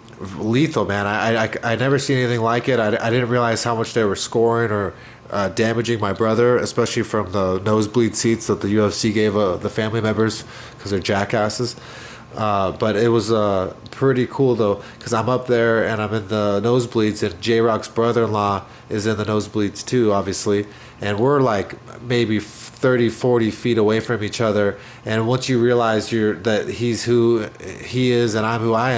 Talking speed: 190 wpm